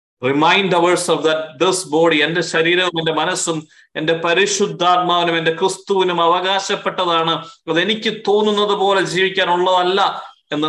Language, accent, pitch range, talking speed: Malayalam, native, 175-200 Hz, 105 wpm